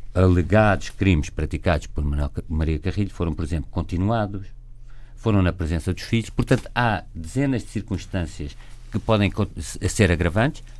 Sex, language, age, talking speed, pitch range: male, Portuguese, 50-69, 135 wpm, 85-110 Hz